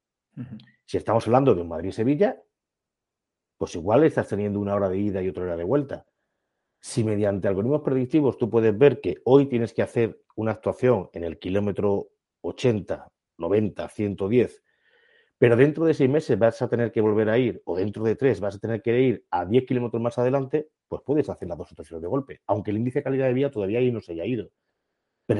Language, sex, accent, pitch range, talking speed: Spanish, male, Spanish, 100-125 Hz, 205 wpm